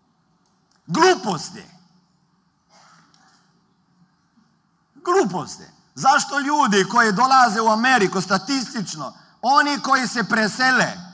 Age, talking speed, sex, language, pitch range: 50-69, 70 wpm, male, Croatian, 145-225 Hz